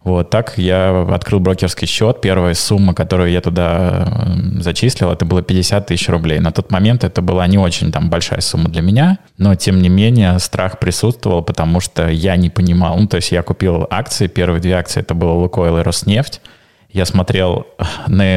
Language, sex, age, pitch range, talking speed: Russian, male, 20-39, 90-105 Hz, 185 wpm